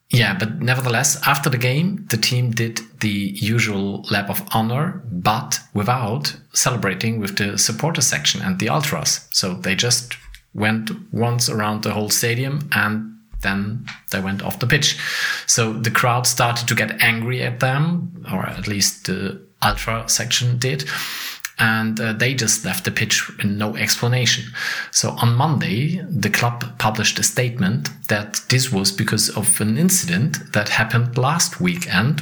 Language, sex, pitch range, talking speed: English, male, 110-130 Hz, 160 wpm